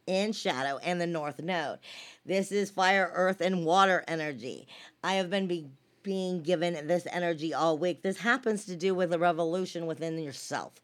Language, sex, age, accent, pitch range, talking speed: English, female, 50-69, American, 170-200 Hz, 175 wpm